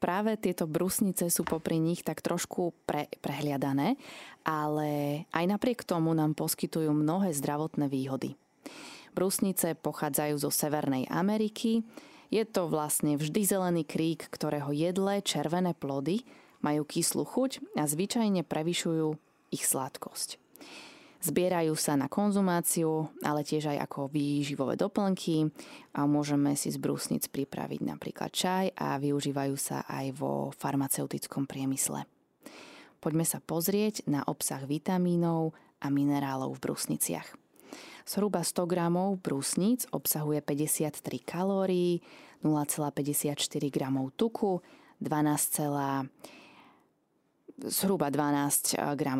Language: Slovak